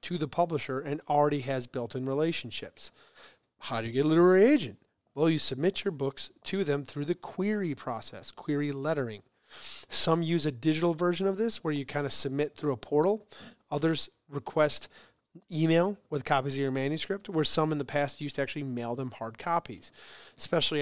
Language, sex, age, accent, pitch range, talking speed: English, male, 30-49, American, 135-165 Hz, 185 wpm